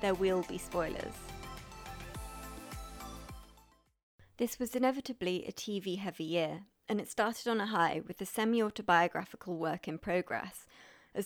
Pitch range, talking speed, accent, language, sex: 180-230 Hz, 125 wpm, British, English, female